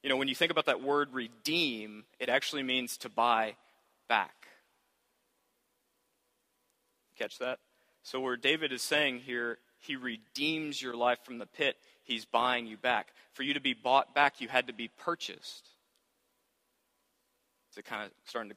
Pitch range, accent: 120-155 Hz, American